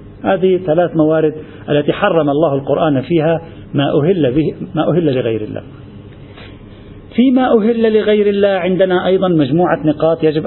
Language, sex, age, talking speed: Arabic, male, 50-69, 140 wpm